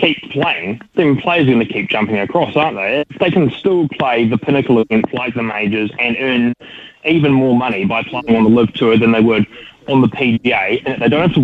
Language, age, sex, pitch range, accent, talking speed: English, 20-39, male, 115-140 Hz, Australian, 230 wpm